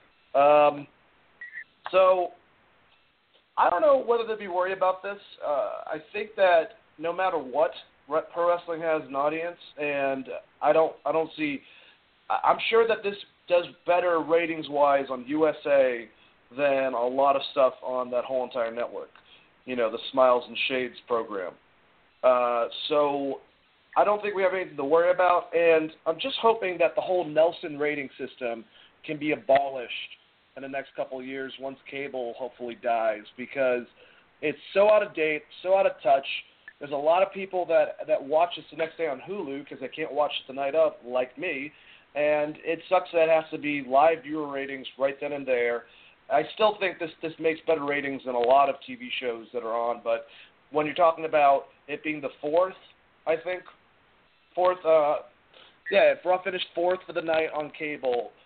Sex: male